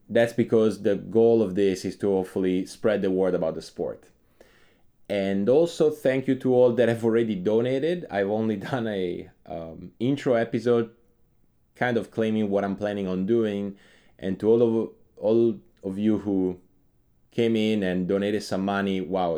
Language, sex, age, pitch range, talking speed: English, male, 20-39, 95-120 Hz, 165 wpm